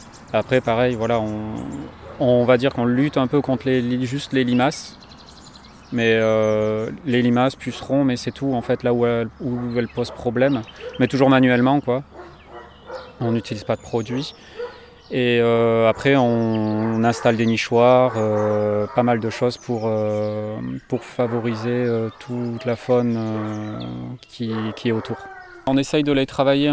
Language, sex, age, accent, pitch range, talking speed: French, male, 30-49, French, 115-130 Hz, 165 wpm